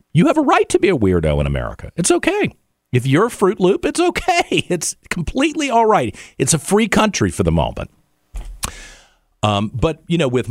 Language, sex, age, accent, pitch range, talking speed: English, male, 50-69, American, 85-135 Hz, 200 wpm